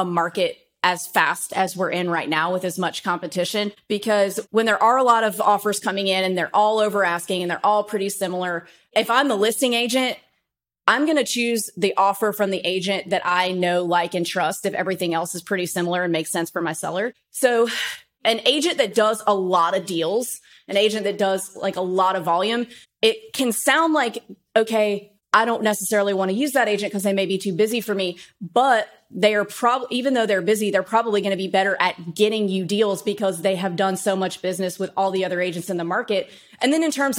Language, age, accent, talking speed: English, 30-49, American, 225 wpm